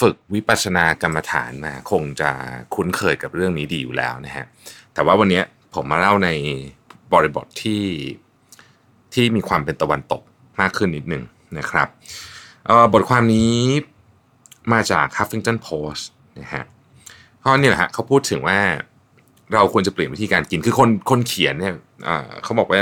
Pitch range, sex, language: 85-120 Hz, male, Thai